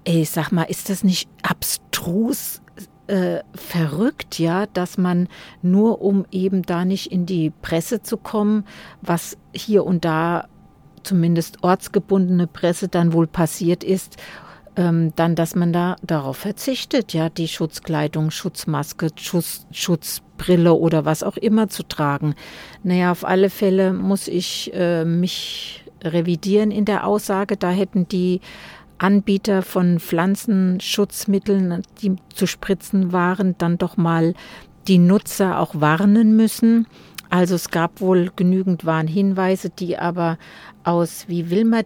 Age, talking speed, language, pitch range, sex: 50-69, 135 wpm, German, 170-200 Hz, female